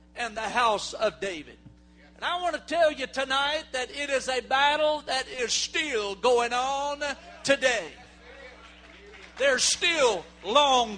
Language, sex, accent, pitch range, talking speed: English, male, American, 245-295 Hz, 140 wpm